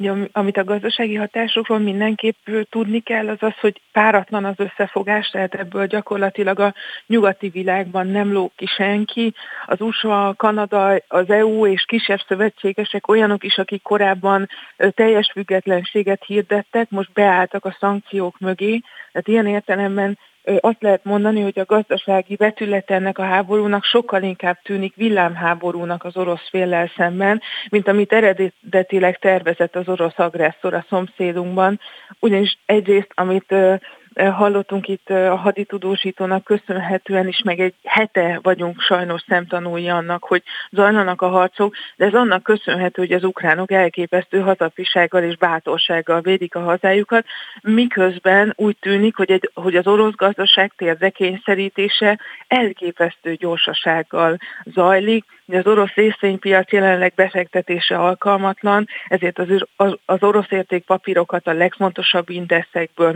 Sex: female